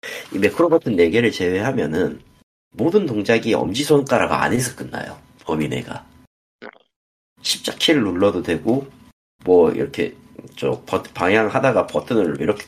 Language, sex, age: Korean, male, 40-59